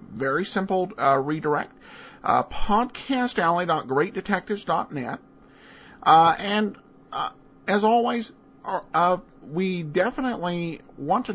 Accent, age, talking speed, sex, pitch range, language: American, 50-69, 95 wpm, male, 140-220 Hz, English